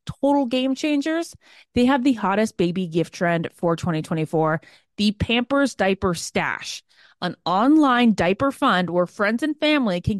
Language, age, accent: English, 20-39, American